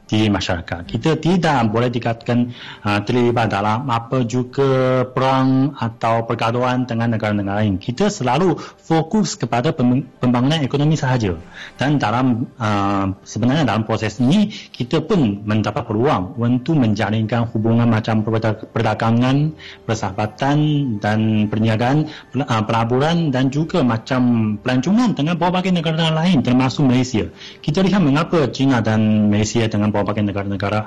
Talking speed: 120 wpm